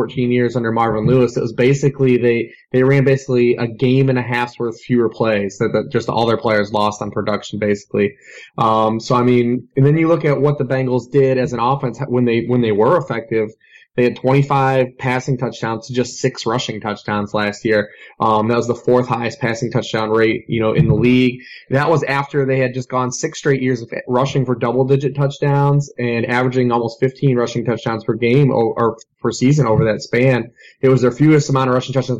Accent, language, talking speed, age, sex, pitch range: American, English, 220 wpm, 20-39, male, 115-130 Hz